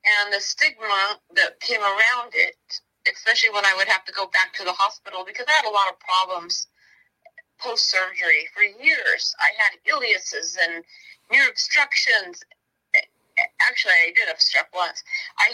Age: 30-49